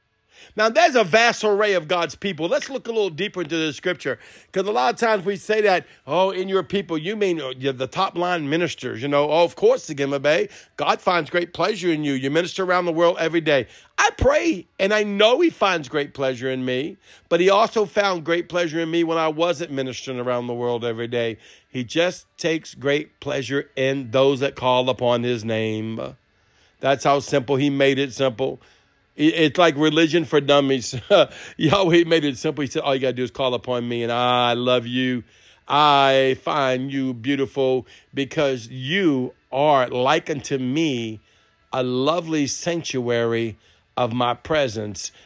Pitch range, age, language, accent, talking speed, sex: 125-170 Hz, 50-69, English, American, 190 wpm, male